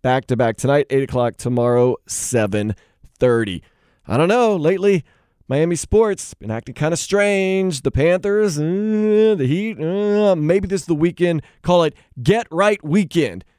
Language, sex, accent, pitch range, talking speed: English, male, American, 125-185 Hz, 145 wpm